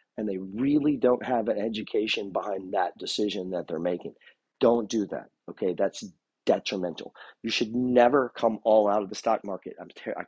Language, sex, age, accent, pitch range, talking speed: English, male, 40-59, American, 120-170 Hz, 185 wpm